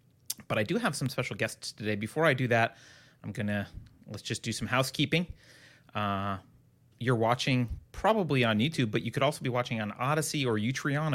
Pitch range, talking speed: 110-135 Hz, 195 wpm